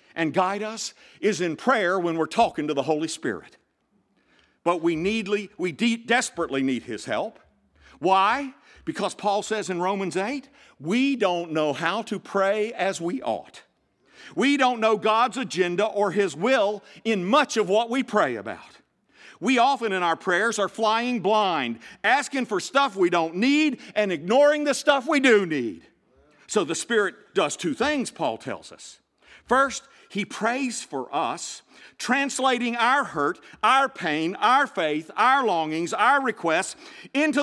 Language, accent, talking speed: English, American, 160 wpm